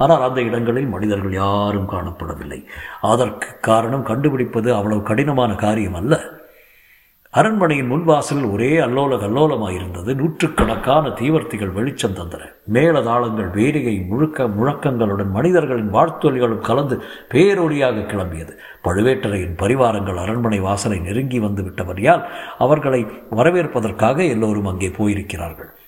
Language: Tamil